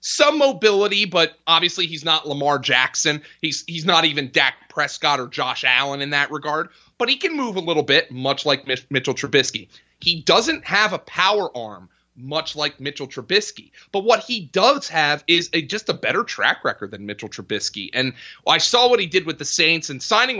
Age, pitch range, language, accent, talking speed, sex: 30-49, 135-195 Hz, English, American, 200 wpm, male